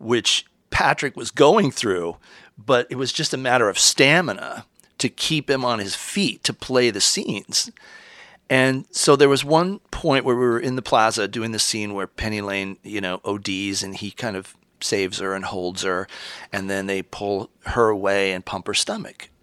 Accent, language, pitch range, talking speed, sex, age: American, English, 100-135 Hz, 195 wpm, male, 40-59